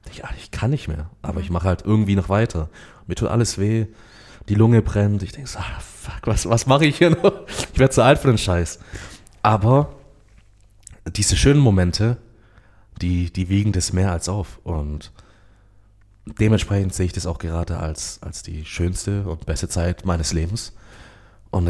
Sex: male